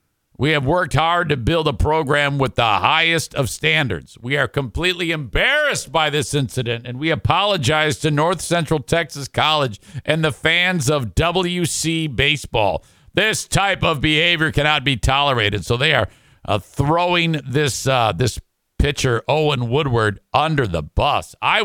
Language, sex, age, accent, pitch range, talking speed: English, male, 50-69, American, 120-160 Hz, 155 wpm